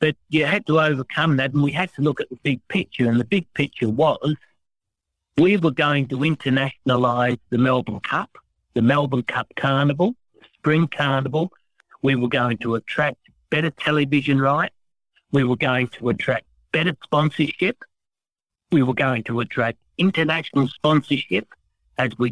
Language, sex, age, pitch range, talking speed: English, male, 60-79, 120-155 Hz, 160 wpm